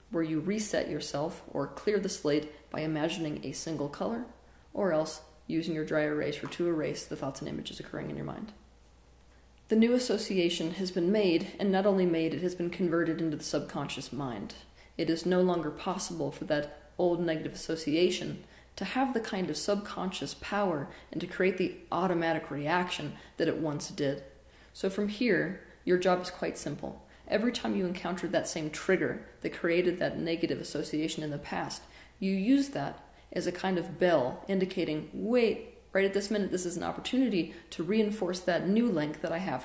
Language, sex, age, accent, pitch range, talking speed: English, female, 30-49, American, 155-195 Hz, 190 wpm